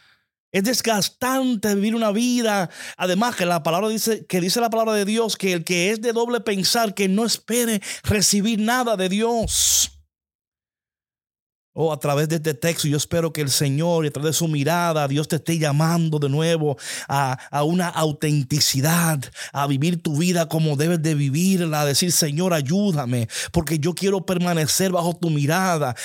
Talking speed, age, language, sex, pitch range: 175 wpm, 30-49, Spanish, male, 140-180 Hz